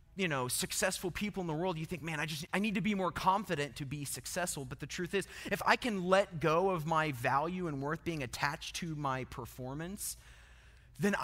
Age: 30-49